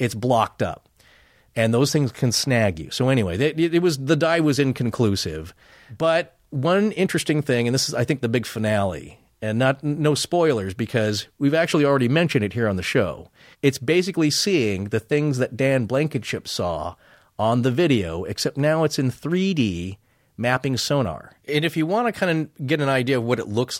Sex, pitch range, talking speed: male, 105-145 Hz, 195 wpm